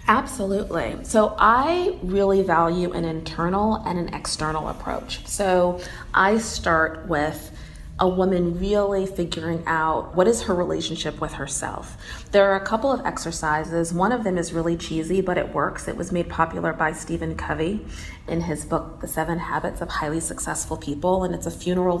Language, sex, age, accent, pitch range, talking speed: English, female, 30-49, American, 160-195 Hz, 170 wpm